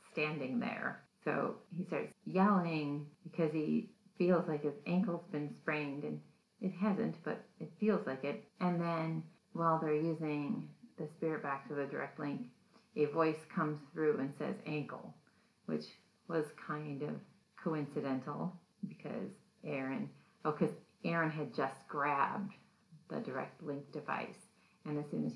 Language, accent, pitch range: English, American, 150-190 Hz